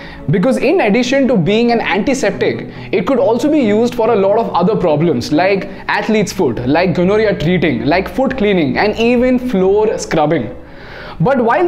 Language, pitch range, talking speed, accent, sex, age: Hindi, 190-250 Hz, 170 wpm, native, male, 20-39